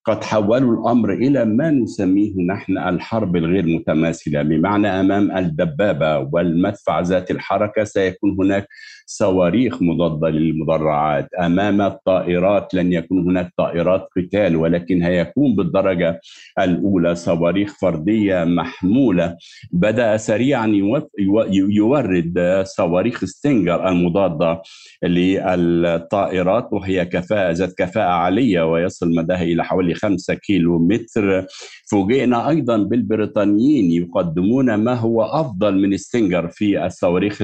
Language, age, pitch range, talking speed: Arabic, 50-69, 85-100 Hz, 105 wpm